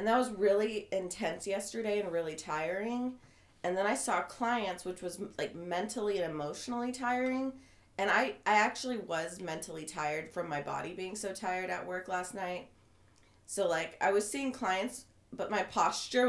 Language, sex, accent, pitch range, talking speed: English, female, American, 180-240 Hz, 175 wpm